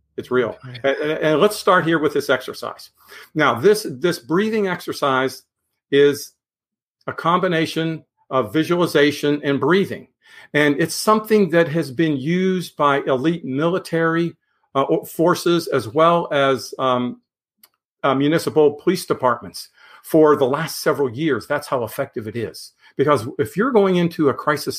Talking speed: 145 wpm